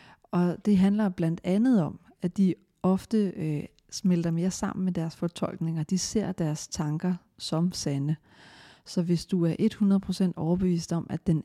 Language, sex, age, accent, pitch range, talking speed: Danish, female, 40-59, native, 165-195 Hz, 160 wpm